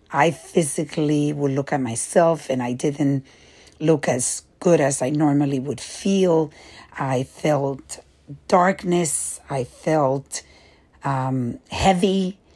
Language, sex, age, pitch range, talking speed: English, female, 50-69, 140-175 Hz, 115 wpm